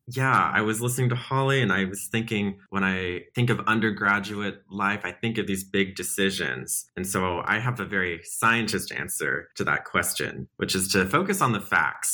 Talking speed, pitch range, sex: 200 wpm, 90-110 Hz, male